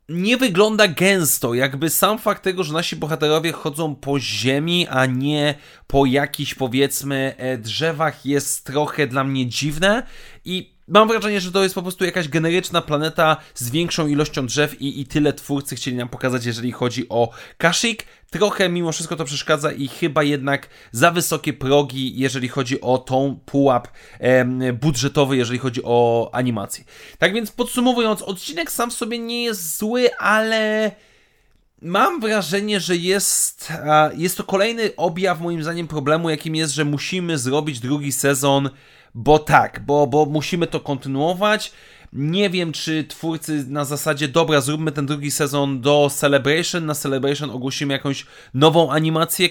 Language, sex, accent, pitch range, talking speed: Polish, male, native, 140-175 Hz, 155 wpm